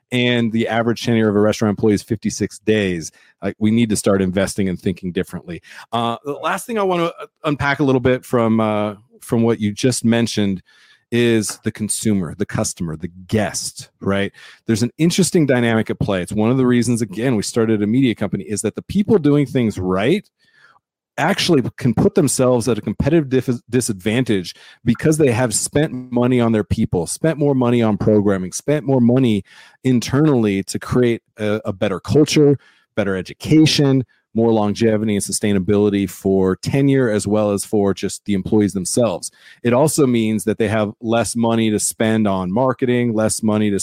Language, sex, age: English, male, 40-59